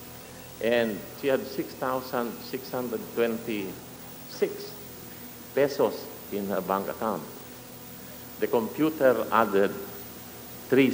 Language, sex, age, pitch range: English, male, 50-69, 90-130 Hz